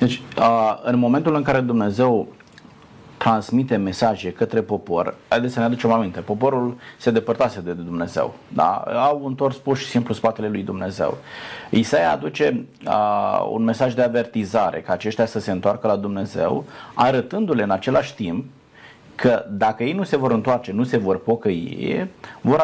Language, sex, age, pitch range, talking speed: Romanian, male, 30-49, 105-135 Hz, 155 wpm